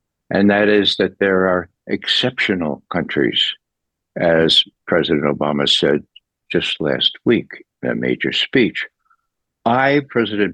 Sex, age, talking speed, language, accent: male, 60-79, 120 wpm, English, American